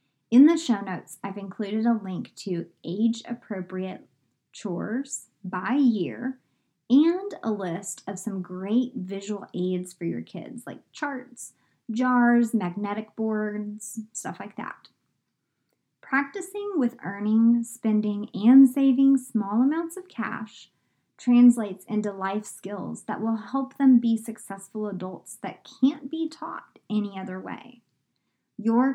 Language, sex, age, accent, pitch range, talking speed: English, male, 20-39, American, 195-255 Hz, 125 wpm